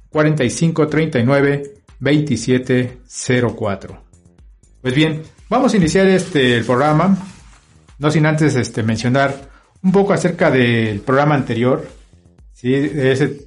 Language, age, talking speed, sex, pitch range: Spanish, 50-69, 110 wpm, male, 120-155 Hz